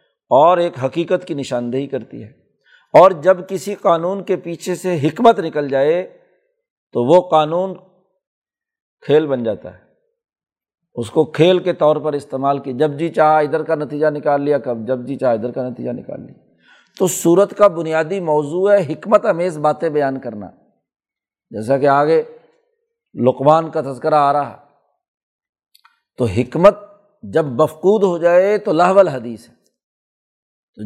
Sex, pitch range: male, 140-185 Hz